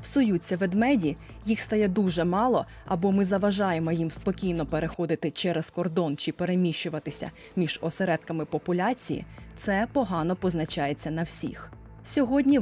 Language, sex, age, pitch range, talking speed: Ukrainian, female, 20-39, 170-210 Hz, 120 wpm